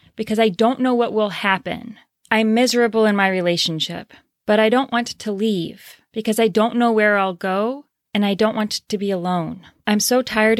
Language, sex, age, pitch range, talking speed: English, female, 30-49, 195-230 Hz, 200 wpm